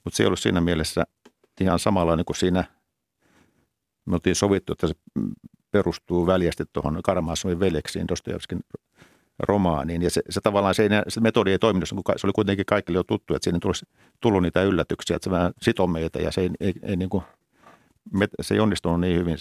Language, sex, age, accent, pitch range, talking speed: Finnish, male, 50-69, native, 85-100 Hz, 200 wpm